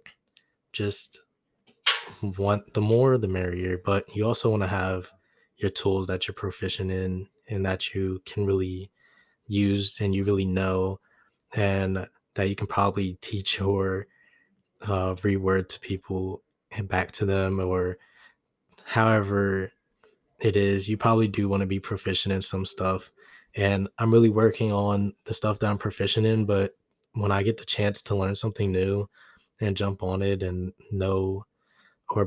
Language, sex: English, male